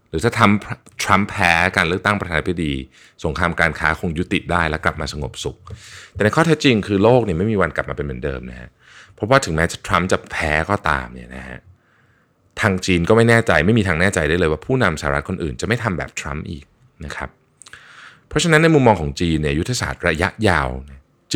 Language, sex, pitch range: Thai, male, 75-110 Hz